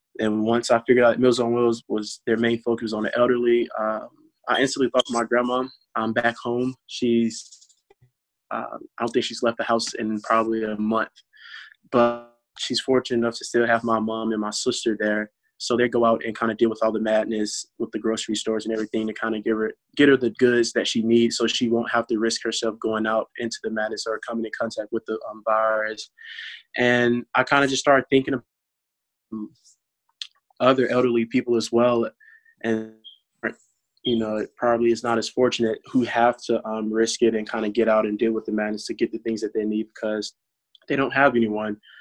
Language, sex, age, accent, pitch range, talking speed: English, male, 20-39, American, 110-120 Hz, 215 wpm